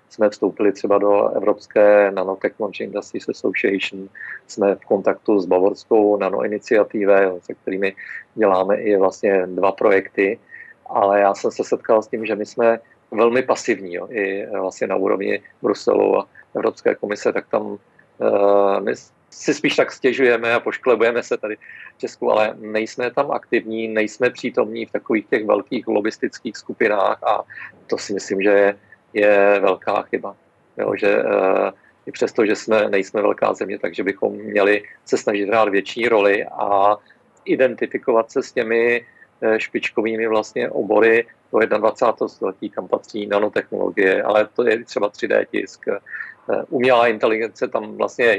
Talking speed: 150 wpm